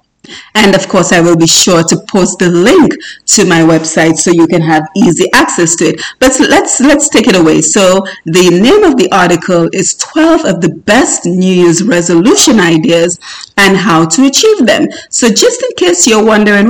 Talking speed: 195 wpm